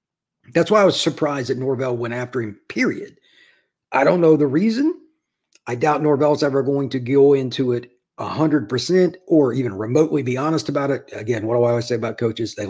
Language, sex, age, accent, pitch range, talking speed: English, male, 50-69, American, 120-150 Hz, 200 wpm